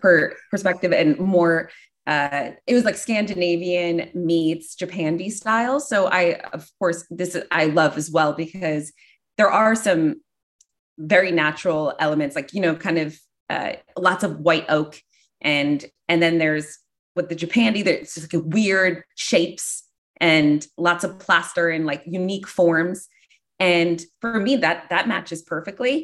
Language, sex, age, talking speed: English, female, 20-39, 150 wpm